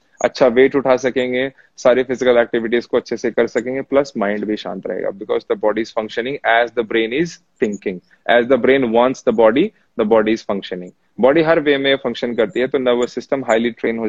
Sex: male